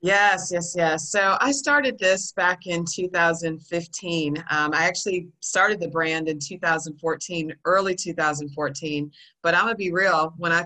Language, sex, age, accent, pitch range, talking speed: English, female, 40-59, American, 155-185 Hz, 160 wpm